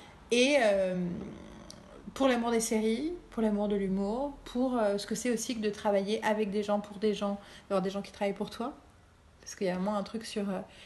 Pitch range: 195-230 Hz